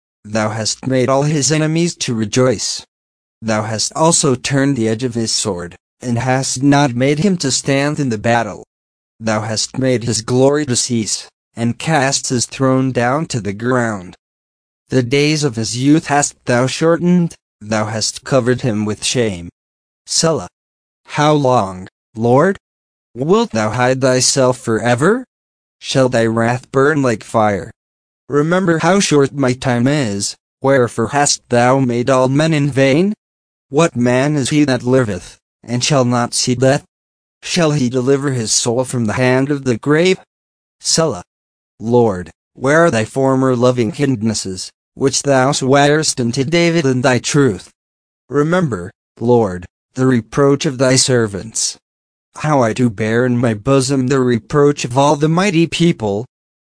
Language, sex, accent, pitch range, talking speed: English, male, American, 110-140 Hz, 155 wpm